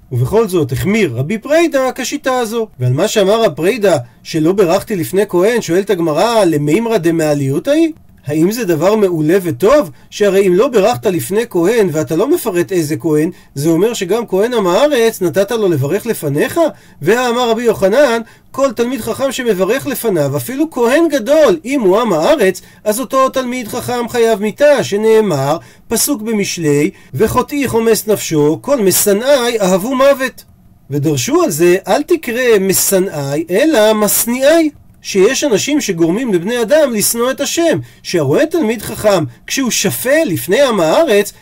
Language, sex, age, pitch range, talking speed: Hebrew, male, 40-59, 175-255 Hz, 145 wpm